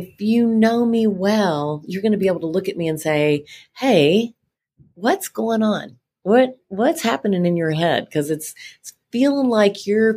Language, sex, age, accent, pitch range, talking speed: English, female, 40-59, American, 165-210 Hz, 190 wpm